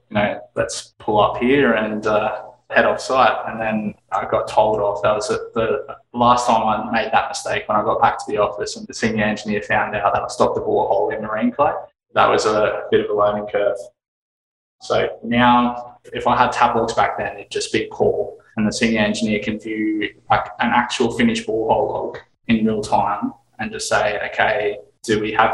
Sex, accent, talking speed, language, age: male, Australian, 215 wpm, English, 20-39